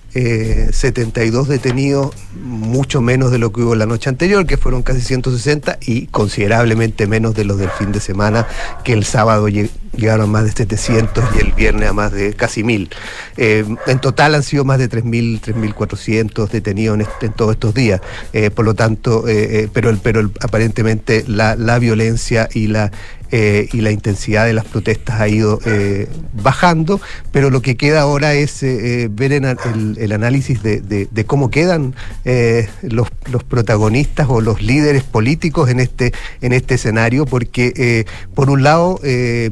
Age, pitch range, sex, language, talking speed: 40-59, 110-125 Hz, male, Spanish, 180 wpm